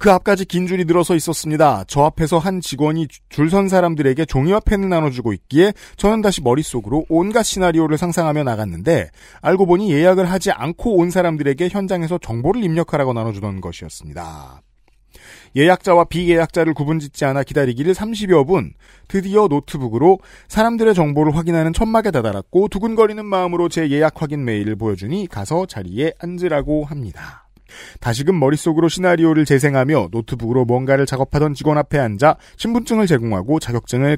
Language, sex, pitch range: Korean, male, 120-180 Hz